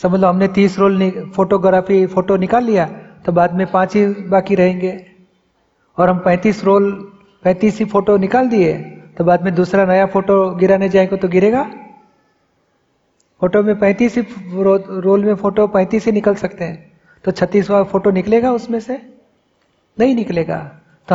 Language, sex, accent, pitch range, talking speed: Hindi, male, native, 185-205 Hz, 160 wpm